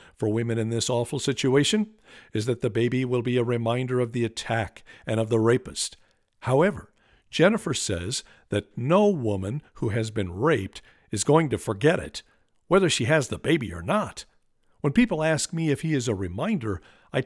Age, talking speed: 50-69, 185 wpm